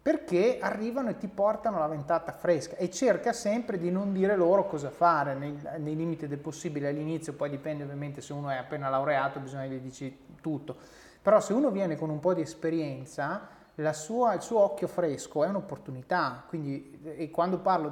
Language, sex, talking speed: Italian, male, 185 wpm